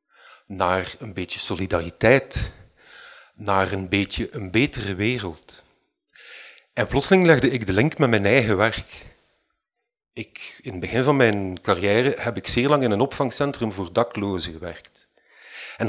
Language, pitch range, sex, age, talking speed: Dutch, 100-145 Hz, male, 40-59, 140 wpm